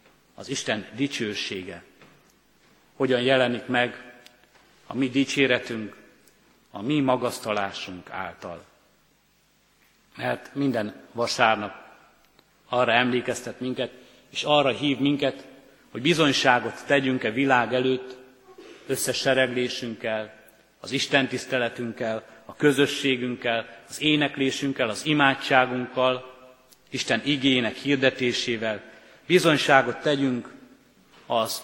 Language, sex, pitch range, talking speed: Hungarian, male, 120-140 Hz, 85 wpm